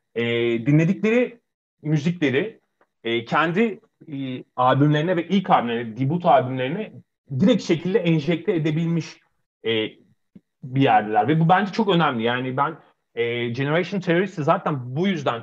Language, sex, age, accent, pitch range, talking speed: Turkish, male, 30-49, native, 125-170 Hz, 125 wpm